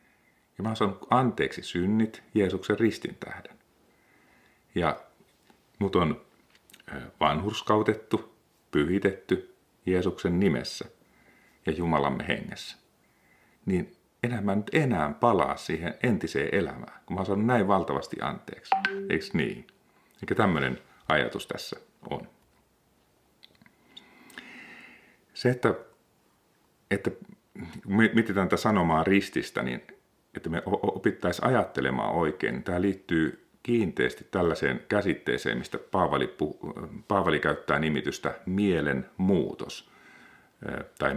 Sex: male